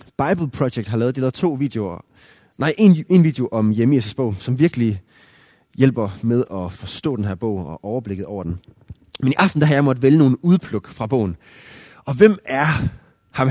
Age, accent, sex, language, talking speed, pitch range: 20-39, native, male, Danish, 200 wpm, 110-150 Hz